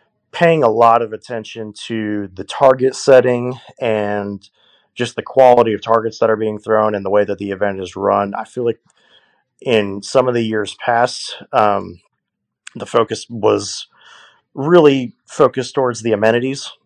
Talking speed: 160 wpm